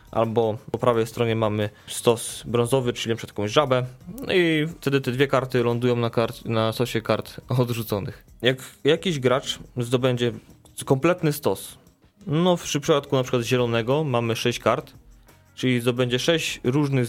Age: 20-39